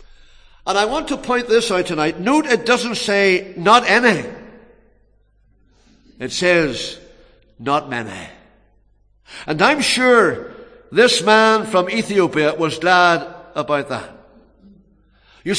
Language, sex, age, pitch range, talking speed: English, male, 60-79, 160-210 Hz, 115 wpm